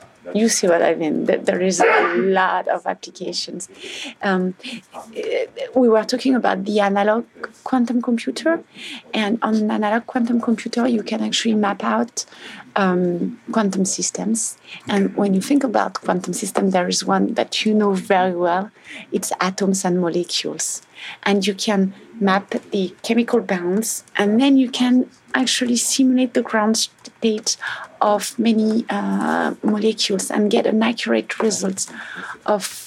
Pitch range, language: 195-235 Hz, English